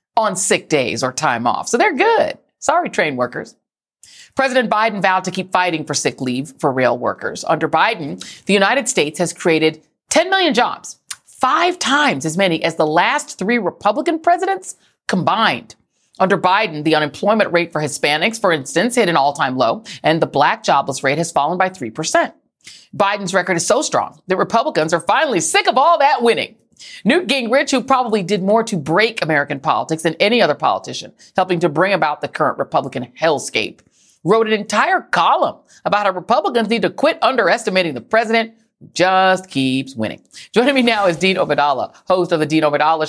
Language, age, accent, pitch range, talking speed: English, 40-59, American, 155-235 Hz, 180 wpm